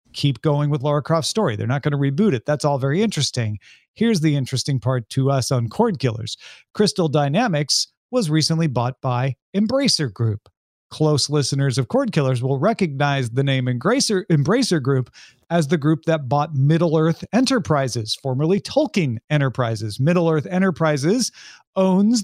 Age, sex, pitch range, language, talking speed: 40-59, male, 135-195 Hz, English, 155 wpm